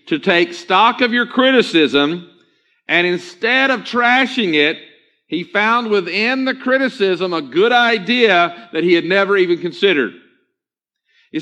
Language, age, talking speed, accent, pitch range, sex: English, 50-69, 135 wpm, American, 190-245 Hz, male